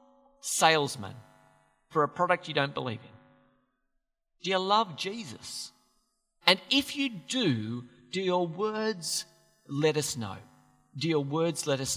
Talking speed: 135 wpm